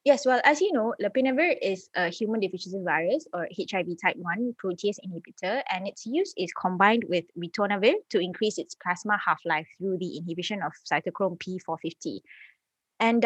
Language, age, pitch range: English, 20-39, 180-230 Hz